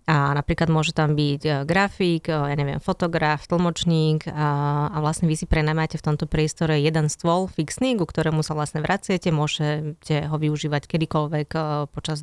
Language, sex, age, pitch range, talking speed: Slovak, female, 20-39, 155-170 Hz, 170 wpm